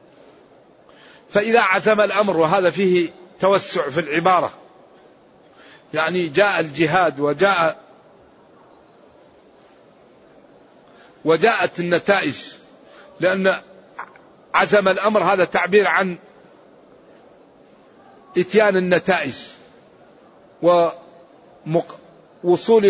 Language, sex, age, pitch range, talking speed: Arabic, male, 50-69, 165-200 Hz, 60 wpm